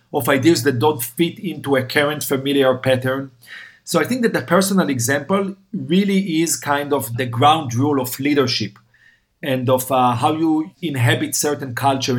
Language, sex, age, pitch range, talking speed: English, male, 40-59, 130-165 Hz, 165 wpm